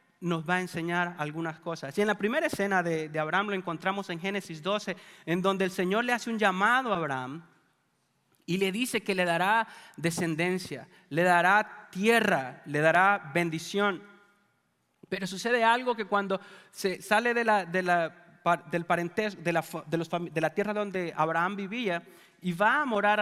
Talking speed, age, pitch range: 180 wpm, 30-49, 170-205 Hz